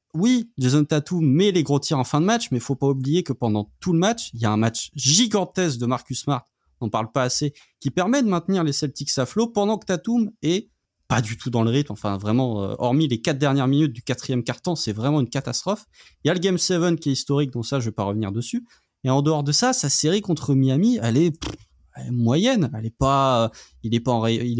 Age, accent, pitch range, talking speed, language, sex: 30-49, French, 120-160 Hz, 255 wpm, French, male